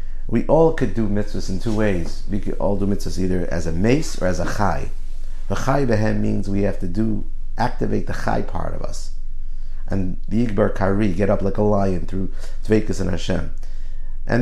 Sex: male